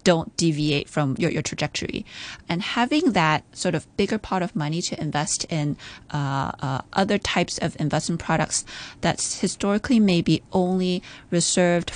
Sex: female